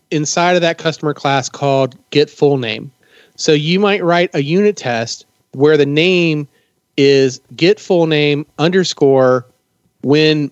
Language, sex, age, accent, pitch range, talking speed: English, male, 30-49, American, 135-185 Hz, 145 wpm